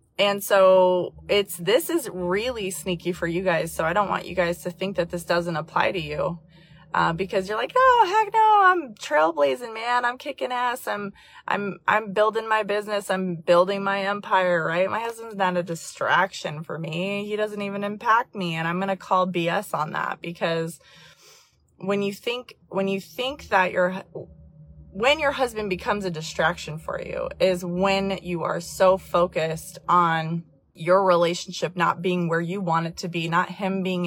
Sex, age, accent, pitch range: female, 20-39, American, 170-205 Hz